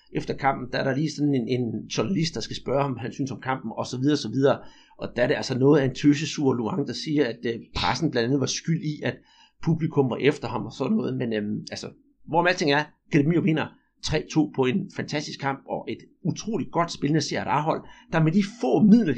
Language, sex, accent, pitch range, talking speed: Danish, male, native, 135-170 Hz, 230 wpm